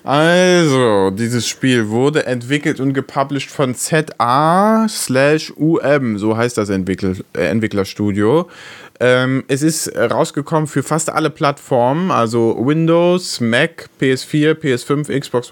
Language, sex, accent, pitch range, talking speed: German, male, German, 115-145 Hz, 105 wpm